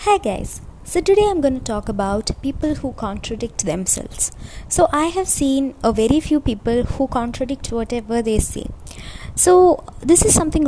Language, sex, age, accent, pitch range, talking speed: Malayalam, female, 20-39, native, 220-285 Hz, 170 wpm